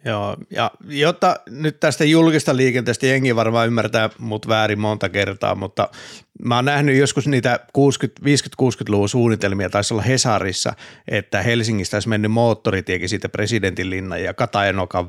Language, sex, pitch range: Finnish, male, 100-120 Hz